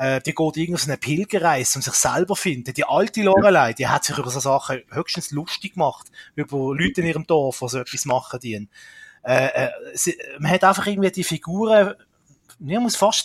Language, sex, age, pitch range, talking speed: German, male, 30-49, 140-185 Hz, 180 wpm